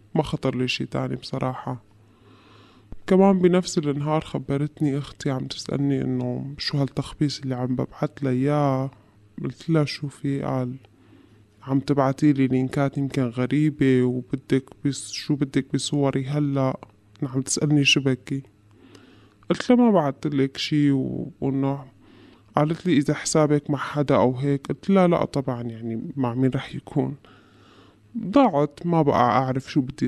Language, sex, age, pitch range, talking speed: Arabic, female, 20-39, 125-150 Hz, 135 wpm